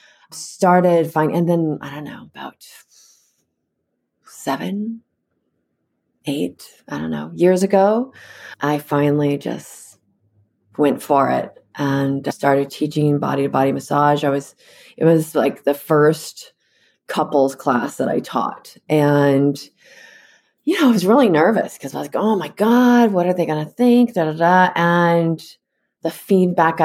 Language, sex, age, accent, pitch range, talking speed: English, female, 30-49, American, 145-180 Hz, 145 wpm